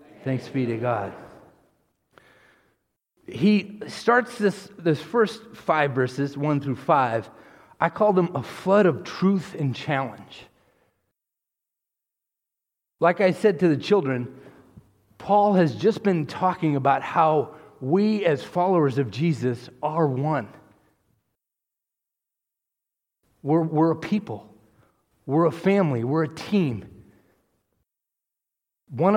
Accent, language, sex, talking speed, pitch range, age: American, English, male, 110 wpm, 135-185 Hz, 40-59